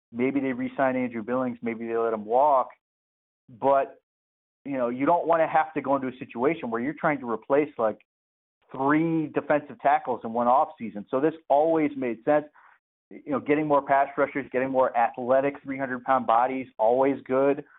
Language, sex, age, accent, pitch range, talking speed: English, male, 30-49, American, 125-150 Hz, 180 wpm